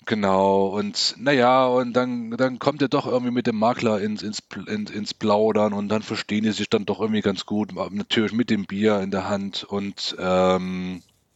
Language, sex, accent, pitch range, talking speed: German, male, German, 90-115 Hz, 190 wpm